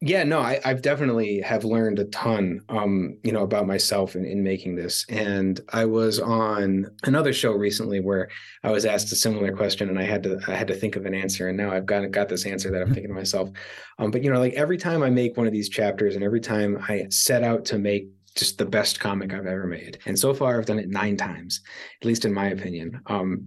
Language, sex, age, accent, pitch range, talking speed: English, male, 30-49, American, 100-115 Hz, 250 wpm